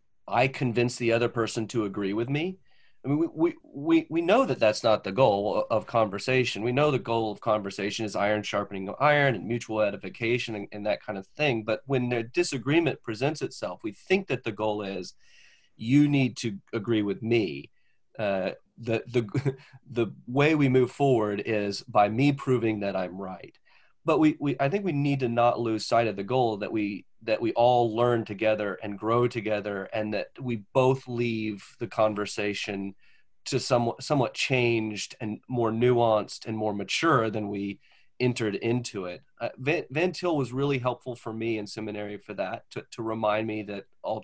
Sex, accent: male, American